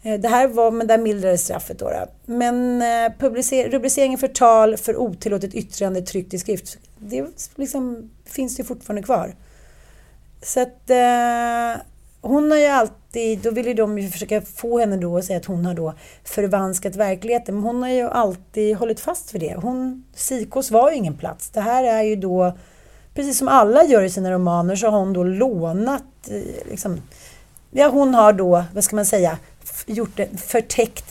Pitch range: 190-250 Hz